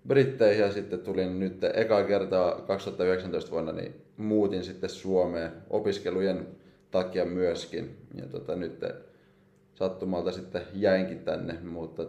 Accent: native